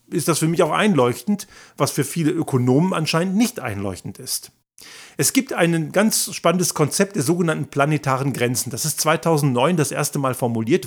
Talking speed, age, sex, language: 170 wpm, 50-69, male, German